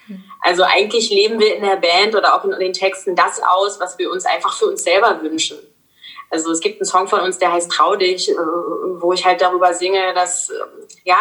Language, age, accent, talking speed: German, 20-39, German, 215 wpm